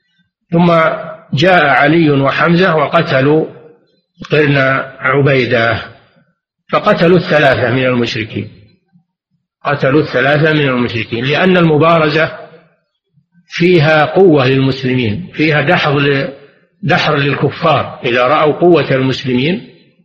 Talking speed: 80 wpm